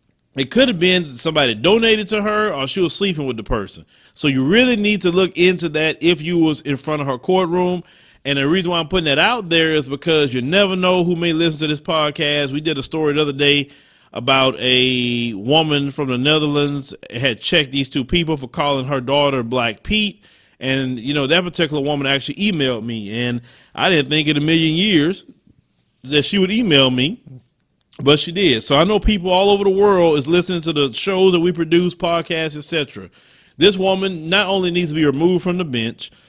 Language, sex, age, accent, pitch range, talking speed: English, male, 30-49, American, 140-185 Hz, 215 wpm